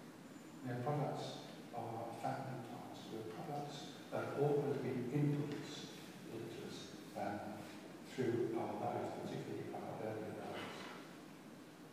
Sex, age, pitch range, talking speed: male, 60-79, 125-160 Hz, 105 wpm